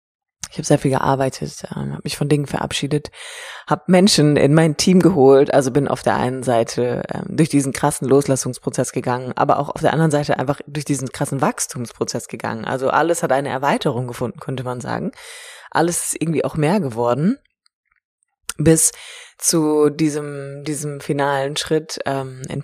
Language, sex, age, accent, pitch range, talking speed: German, female, 20-39, German, 135-170 Hz, 160 wpm